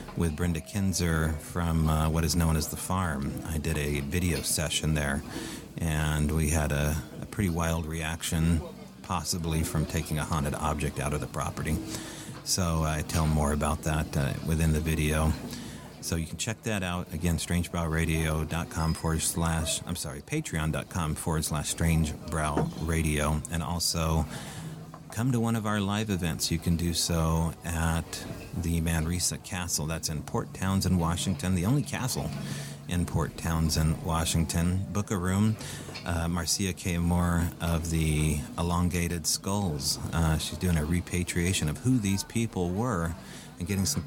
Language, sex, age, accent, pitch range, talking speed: English, male, 30-49, American, 80-95 Hz, 150 wpm